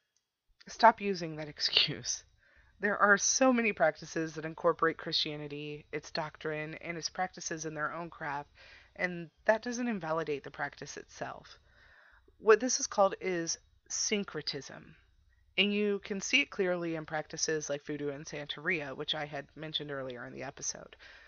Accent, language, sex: American, English, female